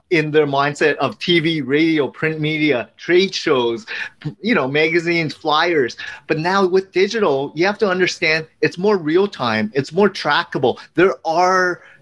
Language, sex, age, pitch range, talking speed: English, male, 30-49, 145-185 Hz, 155 wpm